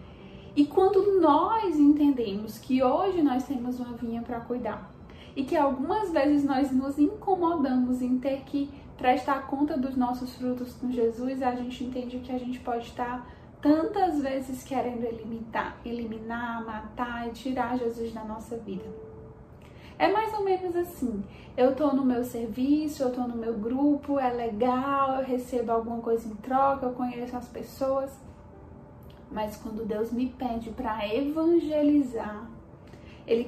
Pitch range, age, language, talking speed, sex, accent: 240-275 Hz, 10-29, Portuguese, 150 wpm, female, Brazilian